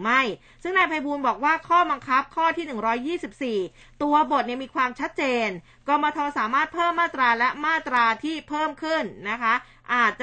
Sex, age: female, 20-39